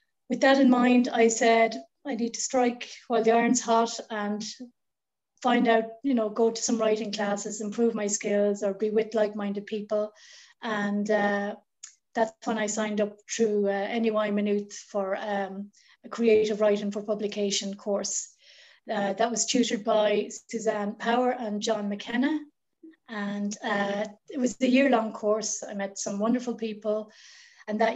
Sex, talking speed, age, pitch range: female, 160 wpm, 30-49, 210-235 Hz